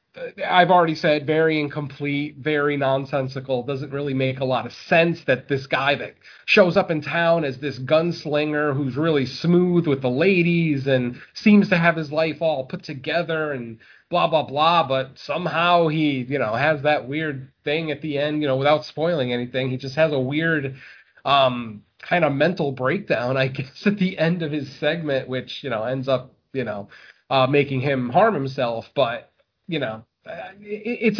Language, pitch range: English, 130-160 Hz